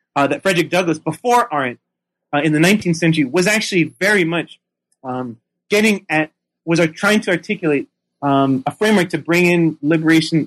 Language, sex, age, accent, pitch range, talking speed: English, male, 30-49, American, 145-170 Hz, 170 wpm